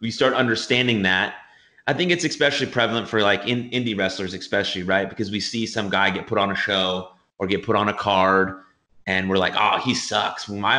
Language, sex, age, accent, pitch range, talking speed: English, male, 30-49, American, 105-140 Hz, 215 wpm